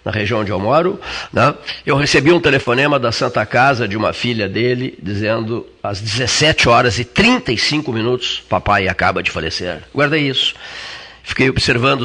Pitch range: 120-150 Hz